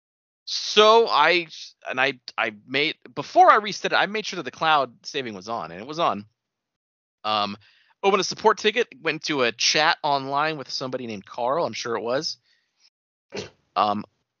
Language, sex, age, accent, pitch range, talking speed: English, male, 30-49, American, 120-185 Hz, 175 wpm